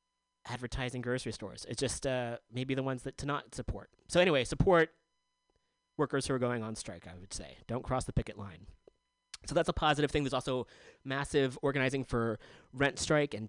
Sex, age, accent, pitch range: male, 30-49, American, 120-150 Hz